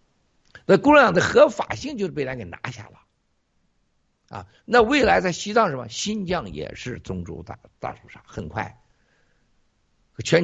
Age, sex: 50-69, male